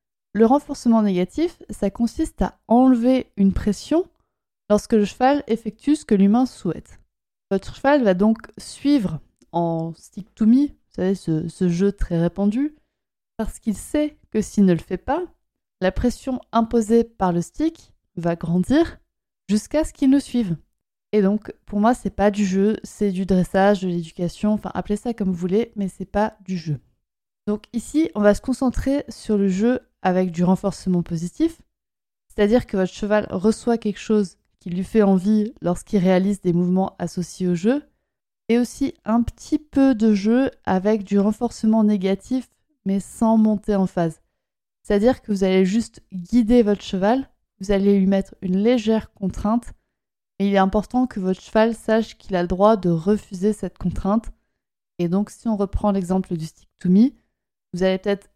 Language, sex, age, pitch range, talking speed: French, female, 20-39, 190-235 Hz, 175 wpm